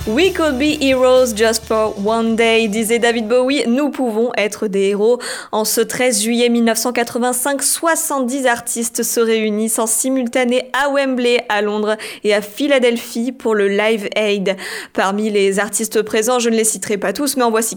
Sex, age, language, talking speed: female, 20-39, French, 180 wpm